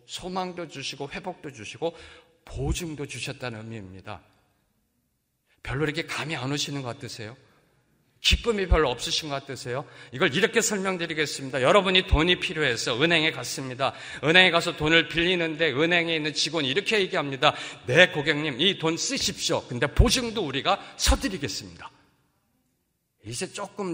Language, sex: Korean, male